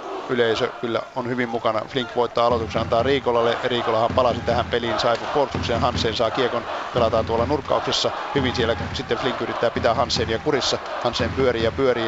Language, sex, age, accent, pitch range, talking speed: Finnish, male, 50-69, native, 115-130 Hz, 175 wpm